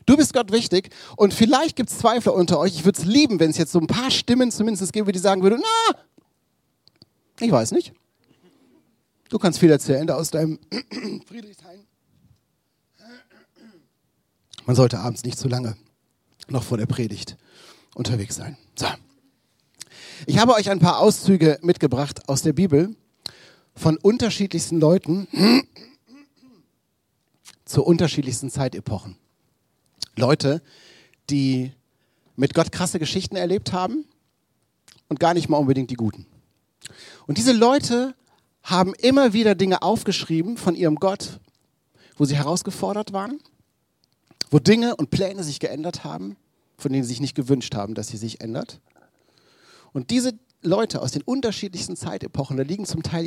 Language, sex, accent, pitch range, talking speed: German, male, German, 135-205 Hz, 145 wpm